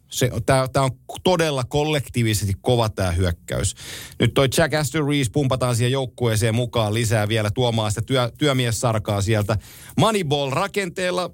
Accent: native